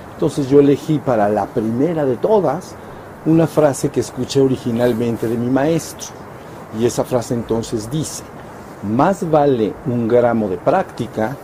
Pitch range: 110-145 Hz